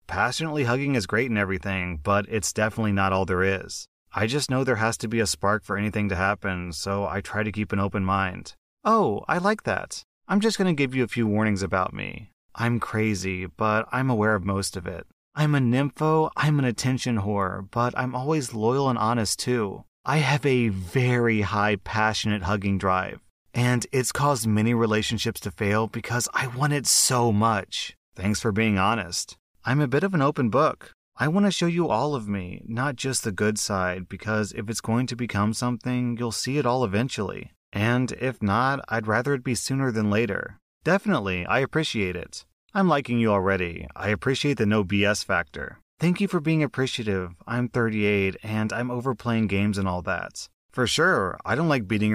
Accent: American